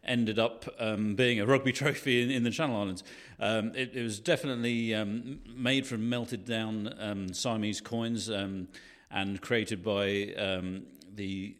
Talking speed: 160 wpm